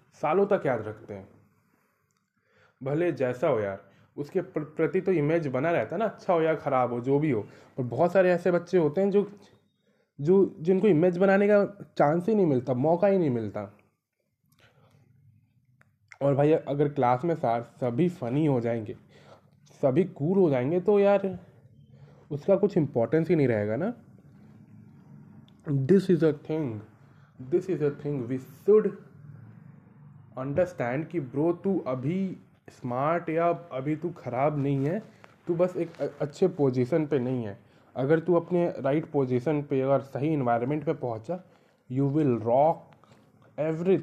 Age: 20-39